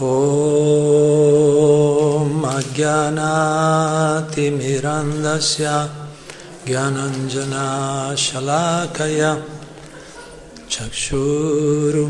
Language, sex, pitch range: Italian, male, 135-150 Hz